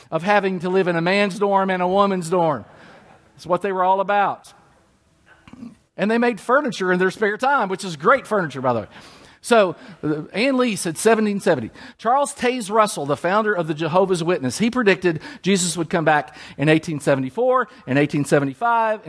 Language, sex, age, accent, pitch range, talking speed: English, male, 50-69, American, 160-235 Hz, 175 wpm